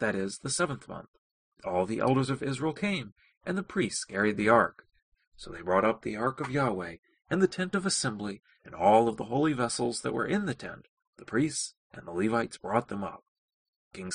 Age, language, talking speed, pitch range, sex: 40-59, English, 210 wpm, 110-165 Hz, male